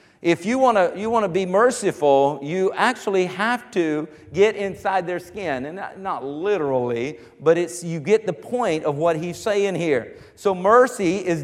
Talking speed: 175 wpm